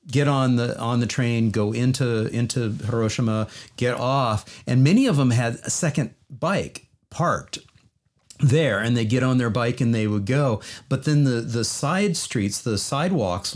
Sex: male